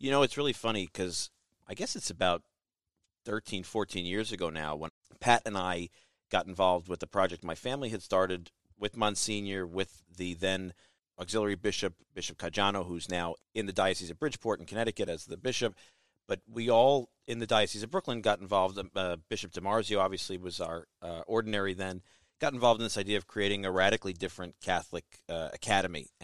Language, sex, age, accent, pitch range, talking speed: English, male, 40-59, American, 90-105 Hz, 185 wpm